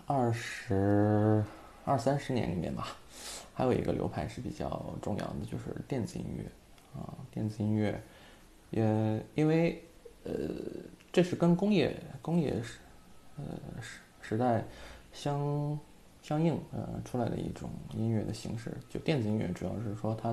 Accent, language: native, Chinese